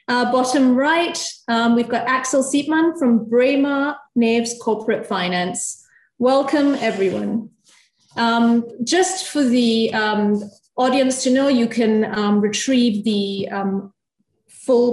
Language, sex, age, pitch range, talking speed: English, female, 30-49, 215-265 Hz, 120 wpm